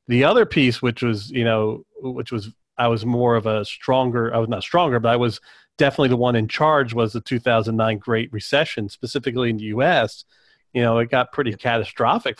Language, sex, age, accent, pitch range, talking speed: English, male, 40-59, American, 115-130 Hz, 205 wpm